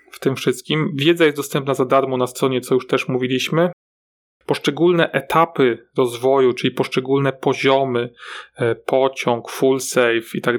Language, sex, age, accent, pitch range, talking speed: Polish, male, 30-49, native, 125-160 Hz, 140 wpm